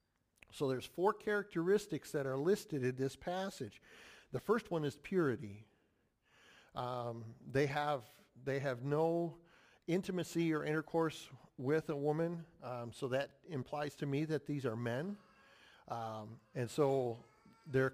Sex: male